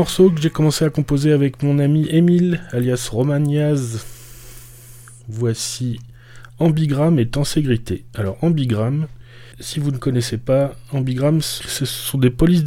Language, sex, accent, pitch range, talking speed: French, male, French, 115-140 Hz, 130 wpm